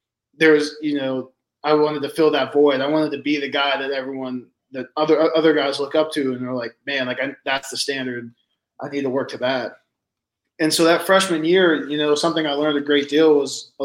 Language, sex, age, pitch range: English, male, 20-39, 130-150 Hz